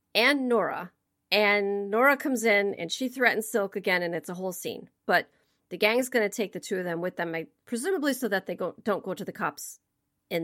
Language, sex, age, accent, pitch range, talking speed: English, female, 40-59, American, 175-240 Hz, 220 wpm